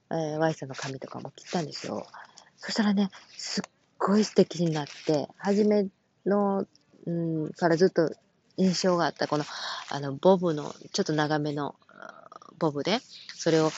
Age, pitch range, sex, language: 20-39, 150-205 Hz, female, Japanese